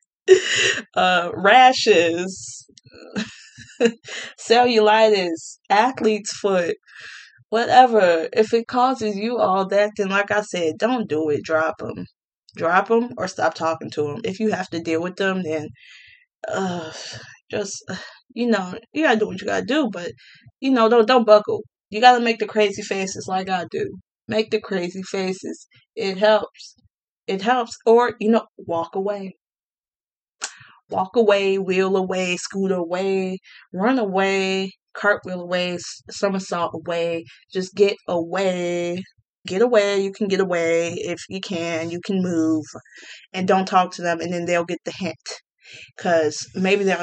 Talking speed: 150 wpm